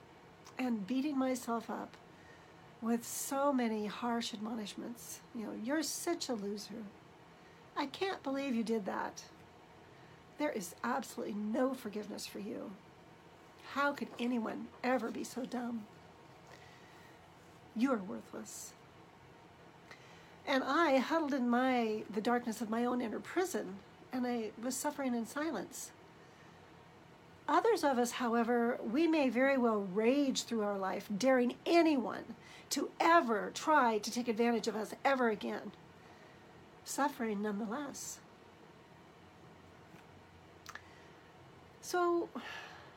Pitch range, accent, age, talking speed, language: 230-290 Hz, American, 60-79, 115 wpm, English